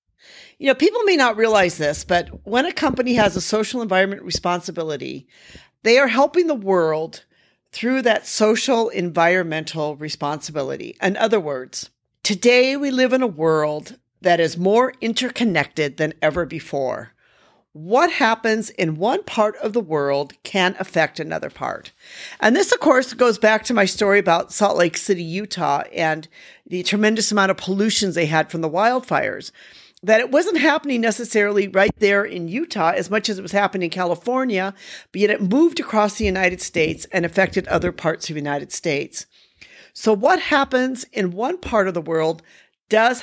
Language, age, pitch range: English, 50-69, 170-240 Hz